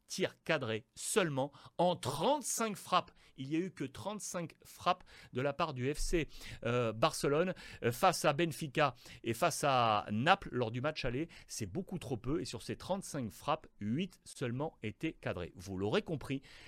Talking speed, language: 165 wpm, French